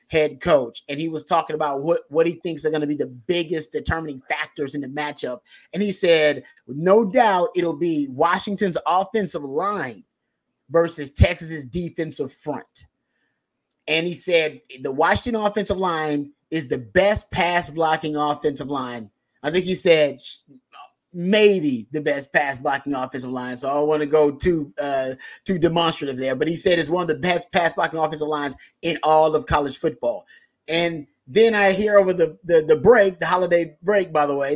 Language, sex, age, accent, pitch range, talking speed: English, male, 30-49, American, 150-200 Hz, 180 wpm